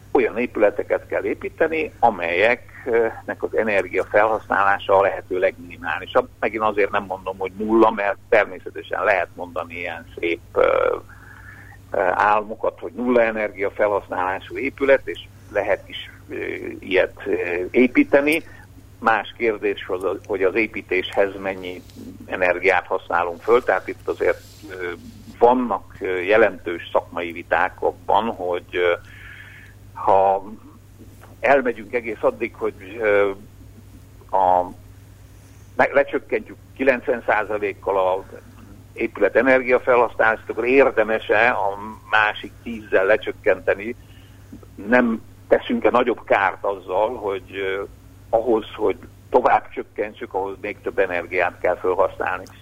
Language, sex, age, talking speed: Hungarian, male, 60-79, 100 wpm